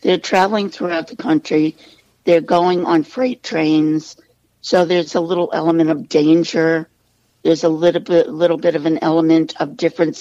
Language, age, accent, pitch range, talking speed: English, 50-69, American, 160-195 Hz, 165 wpm